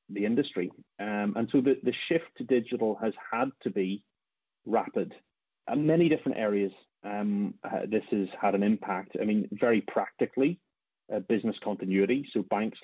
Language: English